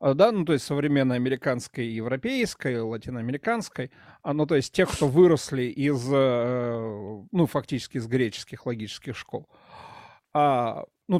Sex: male